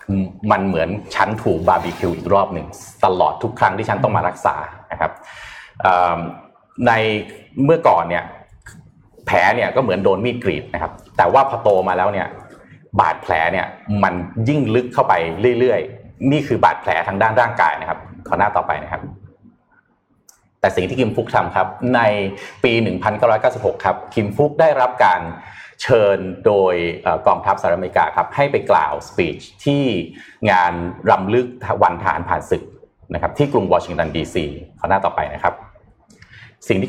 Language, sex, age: Thai, male, 30-49